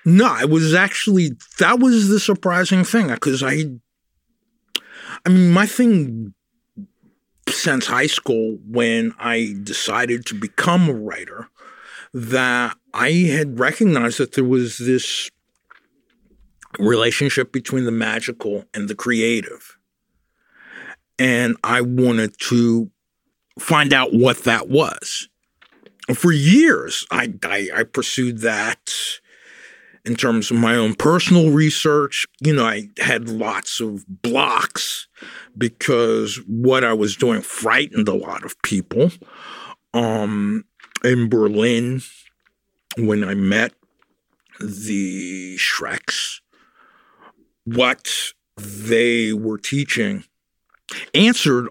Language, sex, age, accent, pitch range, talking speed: English, male, 50-69, American, 115-160 Hz, 110 wpm